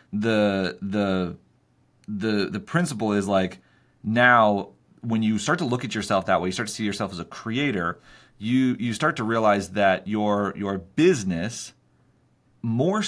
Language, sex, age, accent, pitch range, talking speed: English, male, 30-49, American, 95-120 Hz, 160 wpm